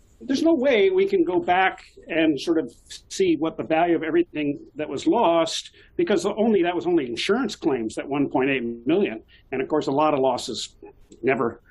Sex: male